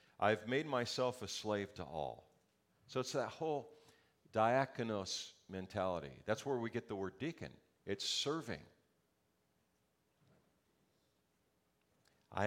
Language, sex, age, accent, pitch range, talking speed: English, male, 50-69, American, 95-135 Hz, 110 wpm